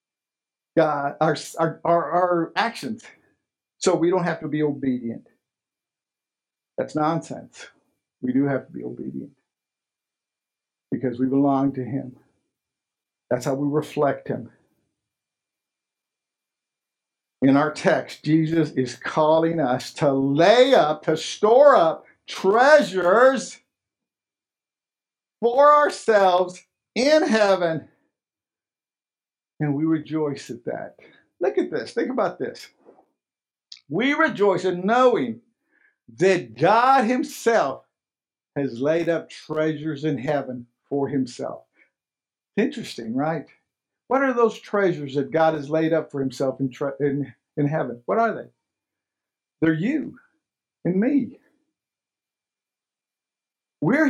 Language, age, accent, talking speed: English, 50-69, American, 110 wpm